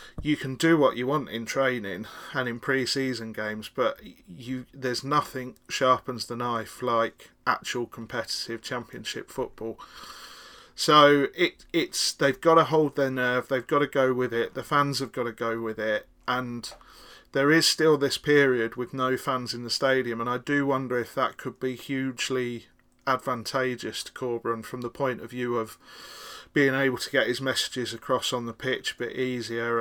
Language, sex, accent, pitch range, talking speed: English, male, British, 120-140 Hz, 180 wpm